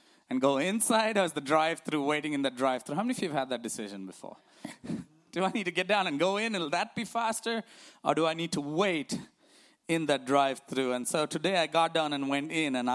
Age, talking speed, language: 20-39, 240 wpm, English